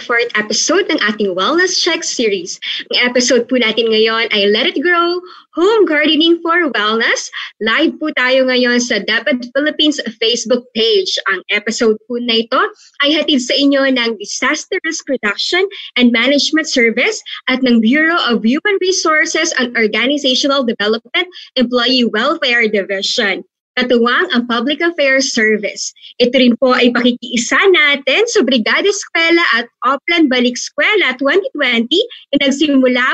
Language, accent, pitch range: Filipino, native, 235-320 Hz